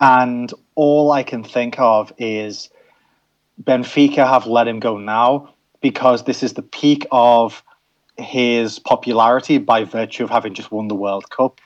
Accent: British